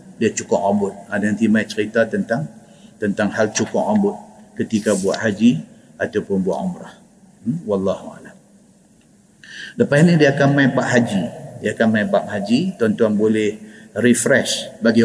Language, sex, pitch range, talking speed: Malay, male, 120-145 Hz, 140 wpm